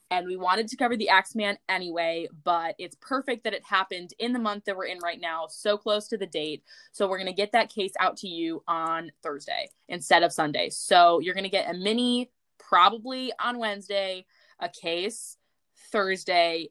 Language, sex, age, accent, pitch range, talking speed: English, female, 20-39, American, 170-220 Hz, 200 wpm